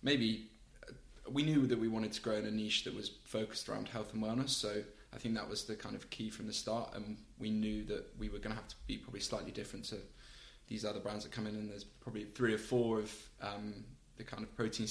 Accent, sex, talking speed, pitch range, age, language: British, male, 260 wpm, 105-115 Hz, 10-29, English